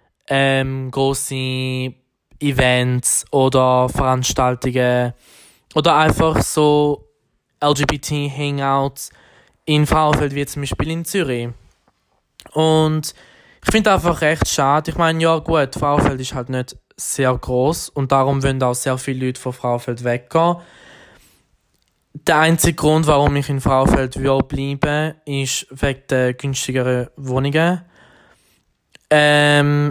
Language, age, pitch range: German, 20-39, 130-150 Hz